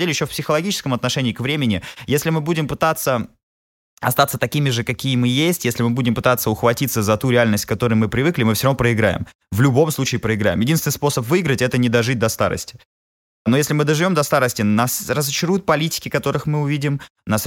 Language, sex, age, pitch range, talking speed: Russian, male, 20-39, 115-155 Hz, 200 wpm